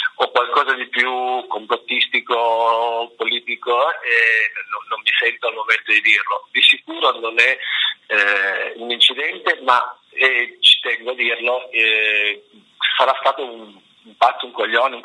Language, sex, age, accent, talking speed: Italian, male, 40-59, native, 150 wpm